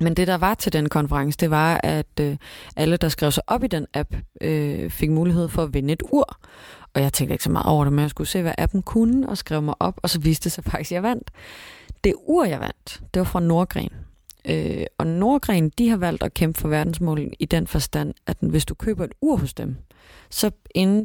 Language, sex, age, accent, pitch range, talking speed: Danish, female, 30-49, native, 155-210 Hz, 245 wpm